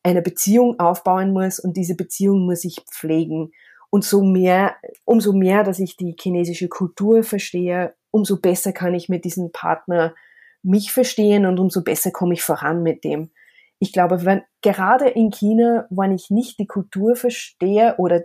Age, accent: 30-49, German